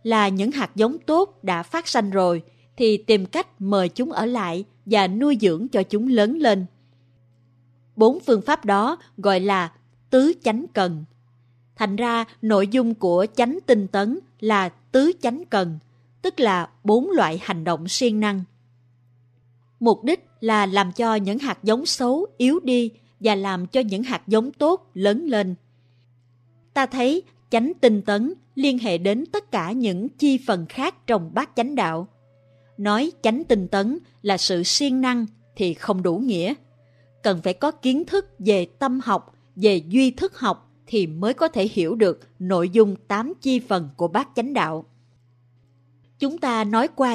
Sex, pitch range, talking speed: female, 165-245 Hz, 170 wpm